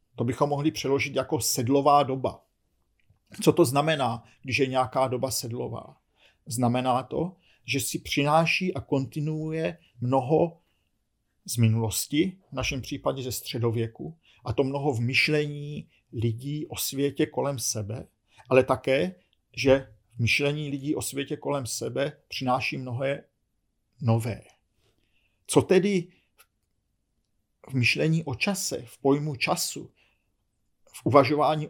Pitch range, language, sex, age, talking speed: 120-155 Hz, Czech, male, 50-69, 120 wpm